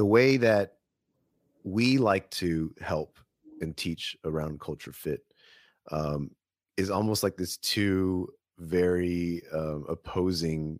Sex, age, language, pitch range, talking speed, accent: male, 30-49, English, 80-100 Hz, 115 wpm, American